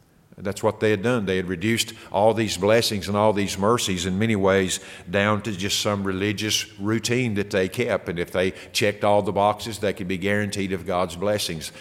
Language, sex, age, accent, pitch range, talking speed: English, male, 50-69, American, 95-110 Hz, 210 wpm